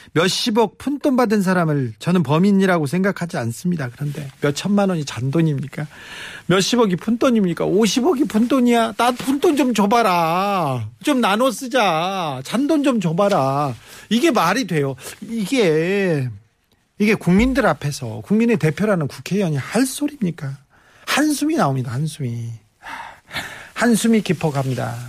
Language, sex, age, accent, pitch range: Korean, male, 40-59, native, 140-205 Hz